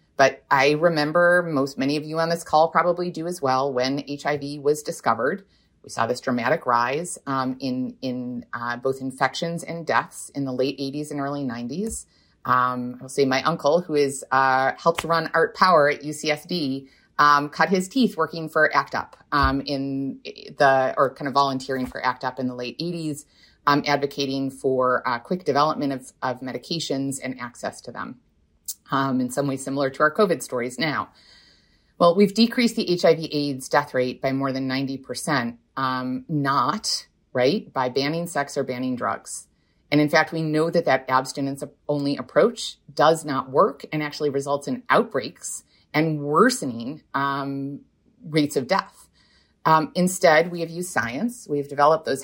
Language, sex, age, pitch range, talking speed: English, female, 30-49, 130-155 Hz, 170 wpm